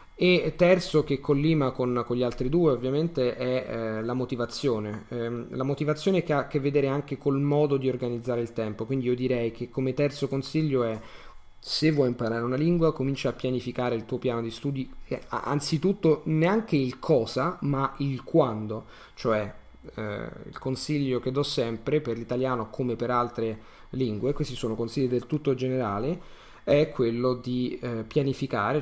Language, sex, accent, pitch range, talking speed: Italian, male, native, 120-140 Hz, 170 wpm